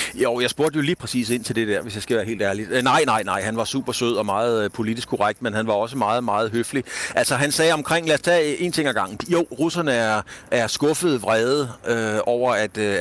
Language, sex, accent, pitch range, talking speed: Danish, male, native, 110-135 Hz, 255 wpm